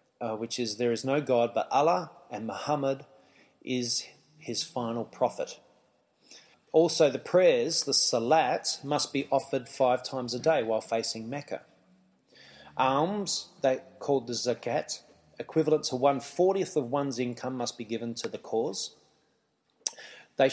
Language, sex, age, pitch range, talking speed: English, male, 30-49, 120-145 Hz, 135 wpm